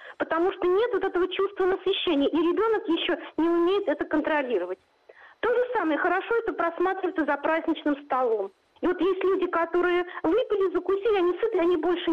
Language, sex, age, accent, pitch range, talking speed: Russian, female, 40-59, native, 320-395 Hz, 170 wpm